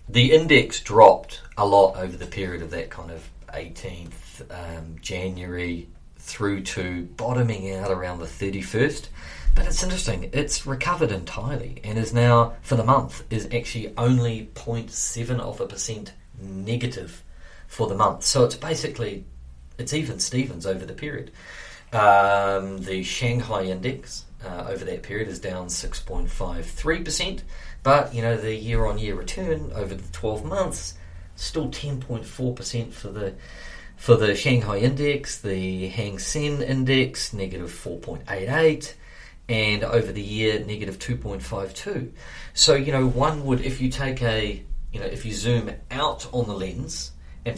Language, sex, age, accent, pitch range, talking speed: English, male, 40-59, Australian, 95-120 Hz, 150 wpm